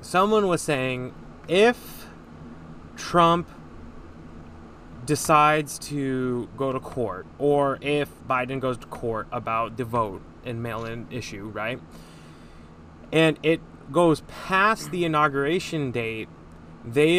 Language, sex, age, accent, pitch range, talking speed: English, male, 20-39, American, 105-150 Hz, 110 wpm